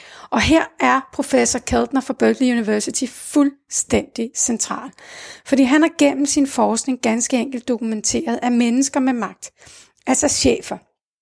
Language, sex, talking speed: Danish, female, 135 wpm